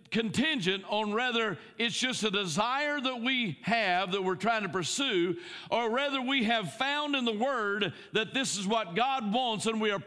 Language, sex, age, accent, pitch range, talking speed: English, male, 50-69, American, 190-255 Hz, 190 wpm